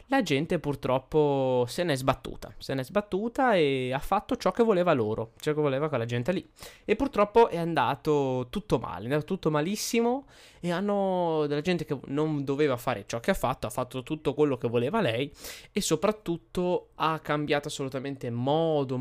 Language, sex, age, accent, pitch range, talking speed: Italian, male, 20-39, native, 125-165 Hz, 185 wpm